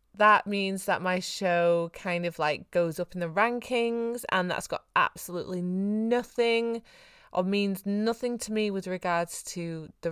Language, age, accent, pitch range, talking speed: English, 20-39, British, 160-200 Hz, 160 wpm